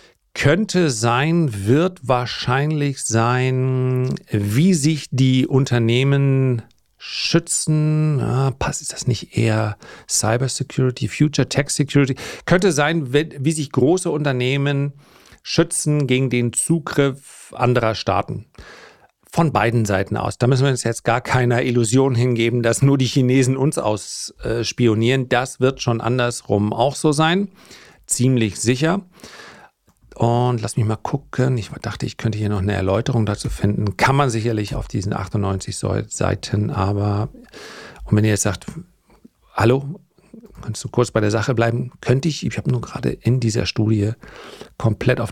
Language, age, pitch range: German, 40-59, 110-140 Hz